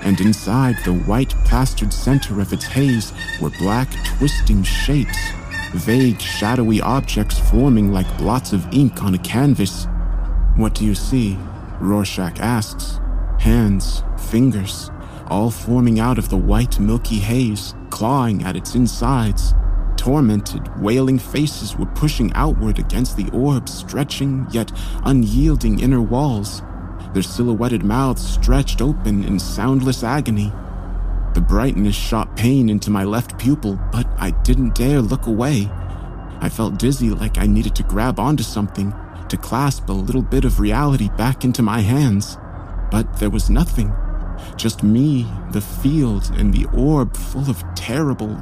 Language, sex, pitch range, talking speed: English, male, 95-125 Hz, 145 wpm